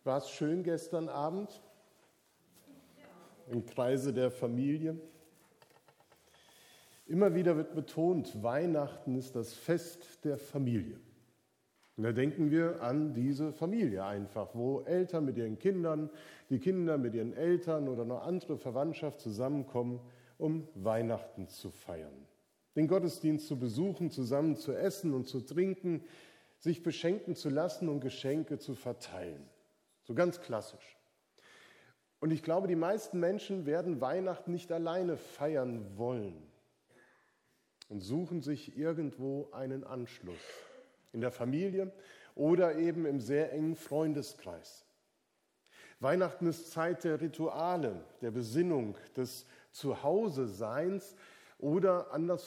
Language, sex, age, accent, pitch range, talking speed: German, male, 50-69, German, 125-170 Hz, 120 wpm